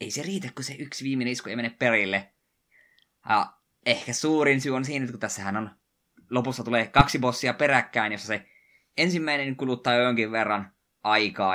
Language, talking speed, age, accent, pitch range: Finnish, 175 wpm, 20-39, native, 100-130 Hz